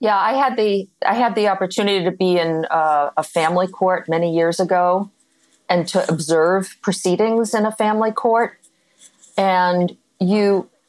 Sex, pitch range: female, 170-220 Hz